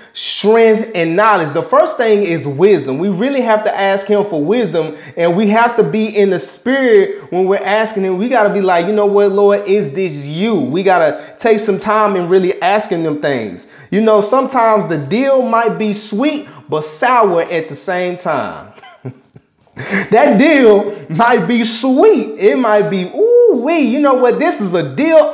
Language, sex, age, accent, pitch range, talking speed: English, male, 30-49, American, 145-220 Hz, 195 wpm